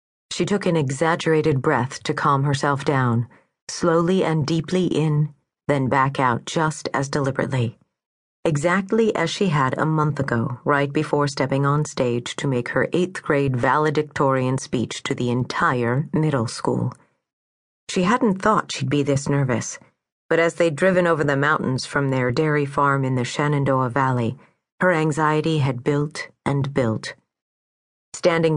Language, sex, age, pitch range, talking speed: English, female, 40-59, 130-160 Hz, 150 wpm